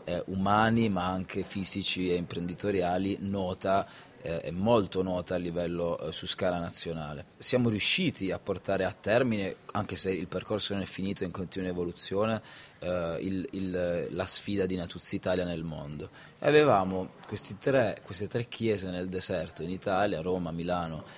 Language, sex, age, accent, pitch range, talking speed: Italian, male, 20-39, native, 90-105 Hz, 160 wpm